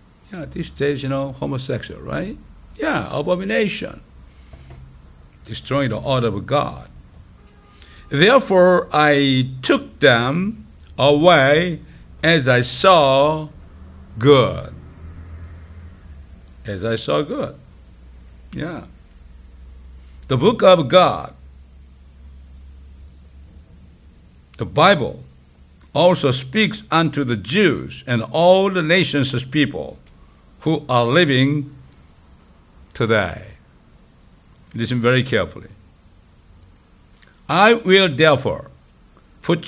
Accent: American